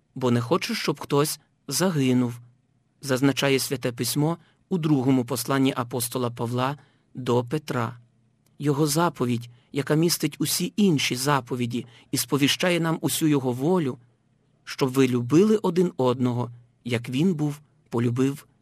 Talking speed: 120 wpm